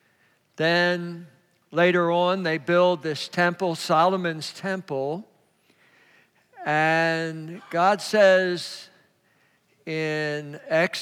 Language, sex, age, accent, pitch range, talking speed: English, male, 60-79, American, 155-185 Hz, 75 wpm